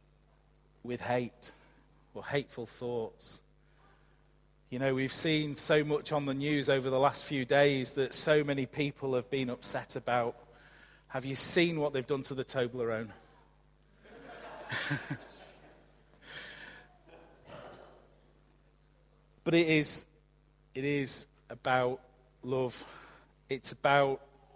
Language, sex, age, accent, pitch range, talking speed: English, male, 40-59, British, 125-150 Hz, 110 wpm